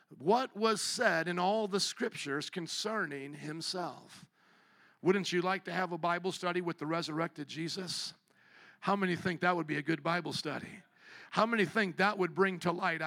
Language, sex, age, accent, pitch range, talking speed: English, male, 50-69, American, 180-220 Hz, 180 wpm